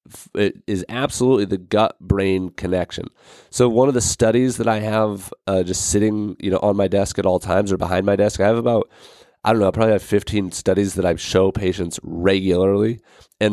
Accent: American